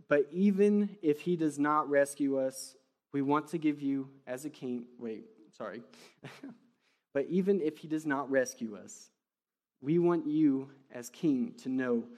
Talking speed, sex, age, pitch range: 165 wpm, male, 20-39, 140-190 Hz